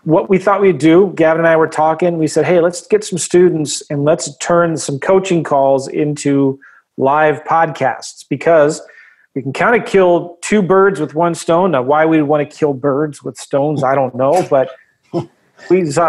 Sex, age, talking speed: male, 40-59, 190 wpm